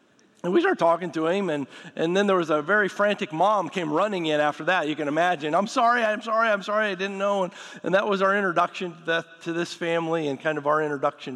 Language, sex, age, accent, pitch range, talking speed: English, male, 50-69, American, 145-175 Hz, 245 wpm